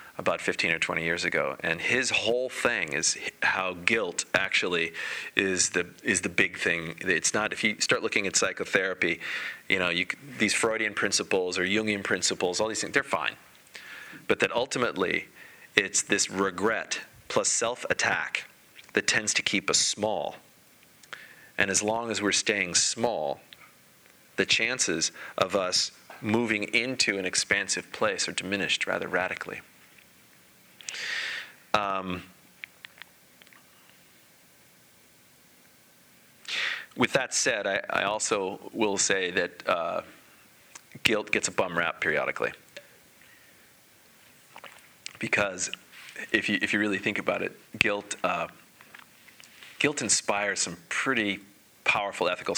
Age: 30-49